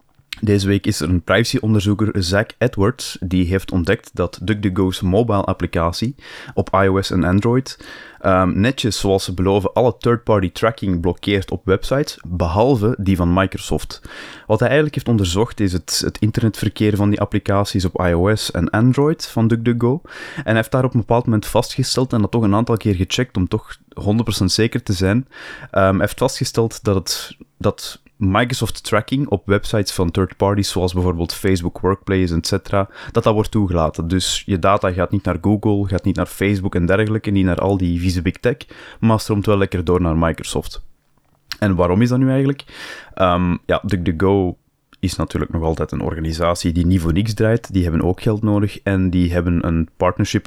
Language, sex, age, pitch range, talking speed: Dutch, male, 20-39, 90-110 Hz, 180 wpm